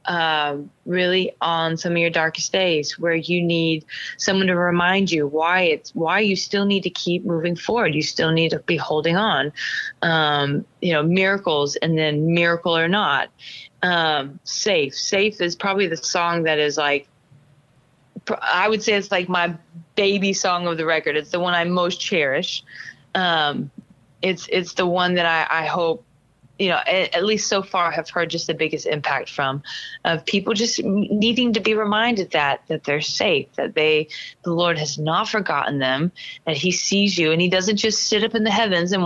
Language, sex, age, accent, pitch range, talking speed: English, female, 20-39, American, 160-200 Hz, 190 wpm